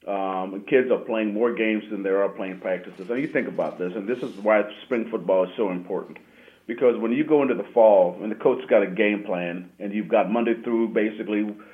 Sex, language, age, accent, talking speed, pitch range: male, English, 40-59, American, 235 wpm, 100-115 Hz